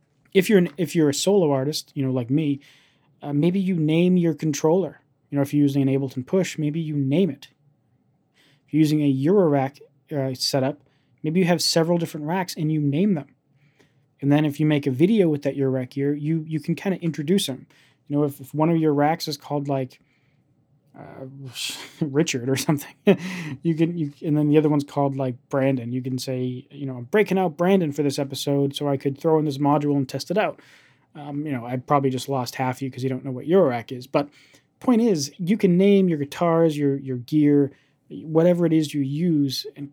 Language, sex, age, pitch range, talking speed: English, male, 20-39, 135-165 Hz, 220 wpm